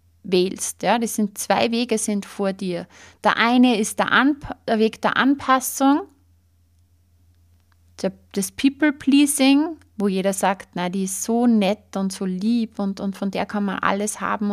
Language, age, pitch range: German, 30-49, 185-235 Hz